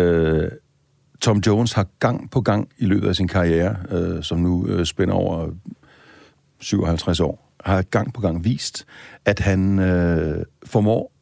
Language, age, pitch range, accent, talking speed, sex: Danish, 60-79, 90-125 Hz, native, 135 wpm, male